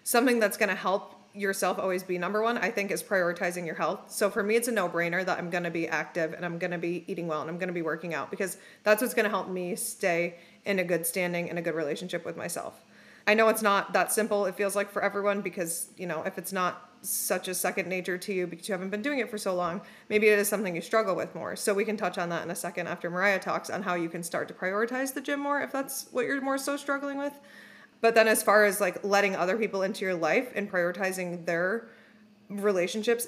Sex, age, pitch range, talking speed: female, 30-49, 180-215 Hz, 265 wpm